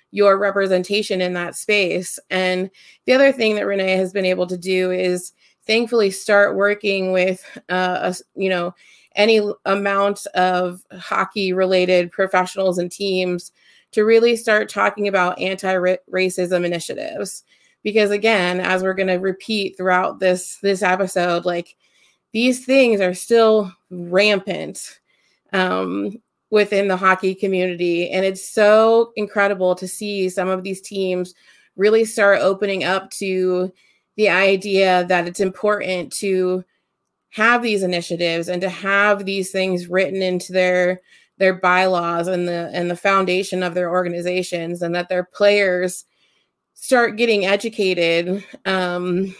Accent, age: American, 30-49